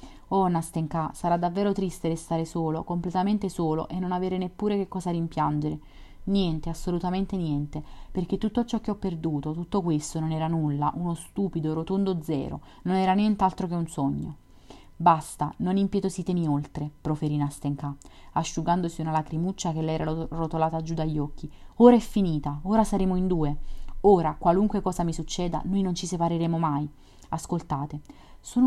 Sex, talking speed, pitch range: female, 155 wpm, 155-185 Hz